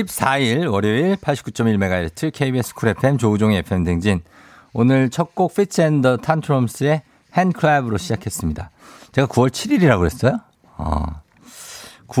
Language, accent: Korean, native